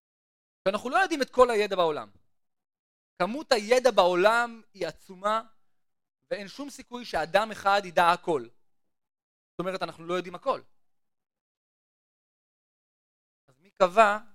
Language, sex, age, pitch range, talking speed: Hebrew, male, 30-49, 155-230 Hz, 115 wpm